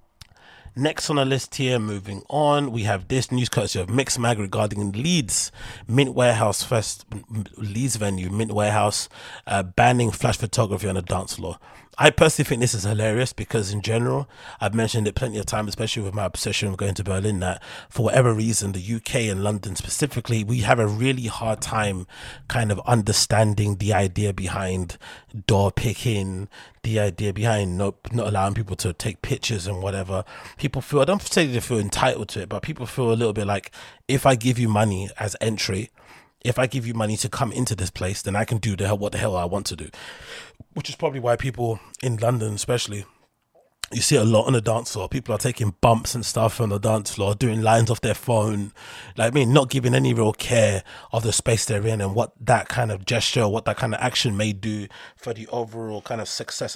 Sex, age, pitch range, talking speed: male, 30-49, 105-120 Hz, 210 wpm